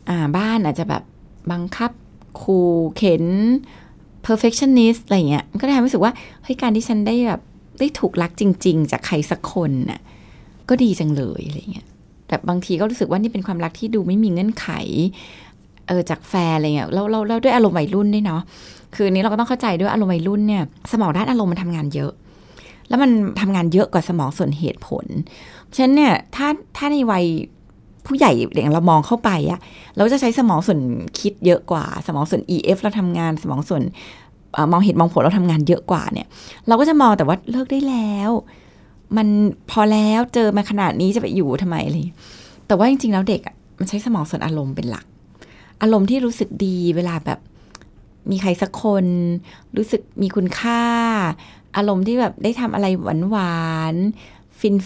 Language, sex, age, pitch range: Thai, female, 20-39, 170-225 Hz